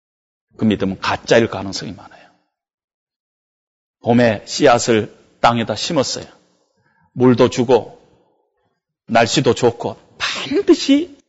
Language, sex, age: Korean, male, 30-49